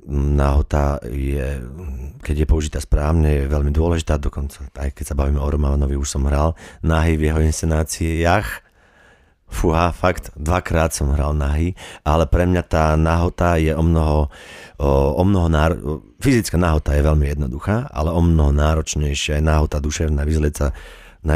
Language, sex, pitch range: Slovak, male, 70-85 Hz